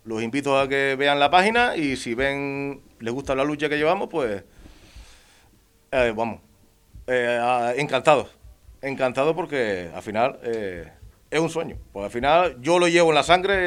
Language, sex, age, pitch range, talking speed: Spanish, male, 30-49, 115-160 Hz, 170 wpm